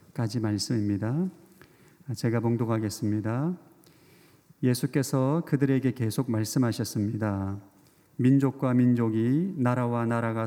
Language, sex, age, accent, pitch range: Korean, male, 40-59, native, 110-140 Hz